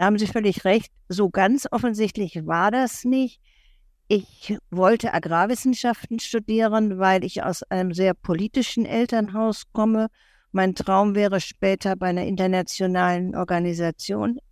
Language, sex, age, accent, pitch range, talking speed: German, female, 50-69, German, 190-225 Hz, 130 wpm